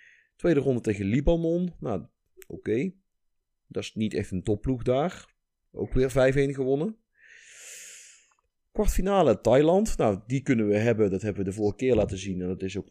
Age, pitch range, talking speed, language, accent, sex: 30-49, 105-145 Hz, 165 wpm, Dutch, Dutch, male